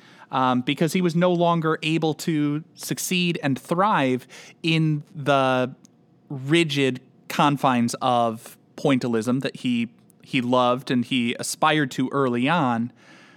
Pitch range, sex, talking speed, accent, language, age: 125-175 Hz, male, 120 wpm, American, English, 20-39